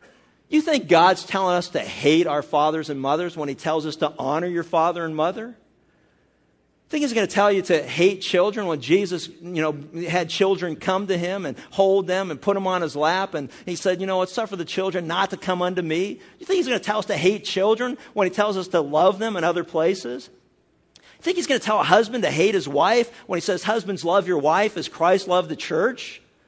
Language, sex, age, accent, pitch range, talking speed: English, male, 50-69, American, 175-260 Hz, 240 wpm